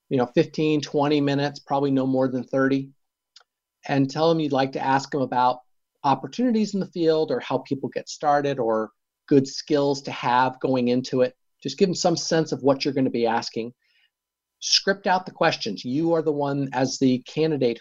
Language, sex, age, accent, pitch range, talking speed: English, male, 50-69, American, 125-155 Hz, 200 wpm